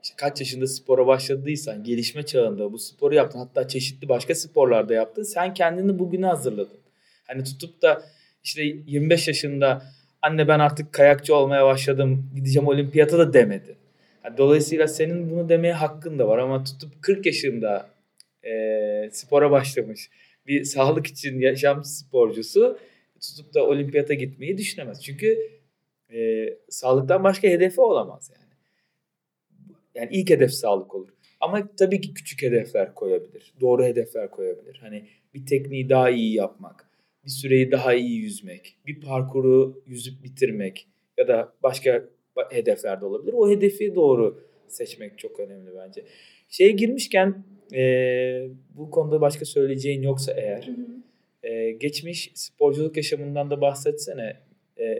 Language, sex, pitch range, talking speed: Turkish, male, 135-210 Hz, 135 wpm